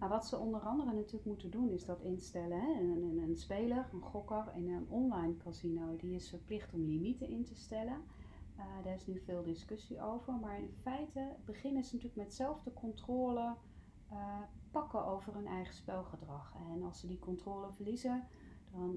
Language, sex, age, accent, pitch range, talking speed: Dutch, female, 40-59, Dutch, 175-220 Hz, 195 wpm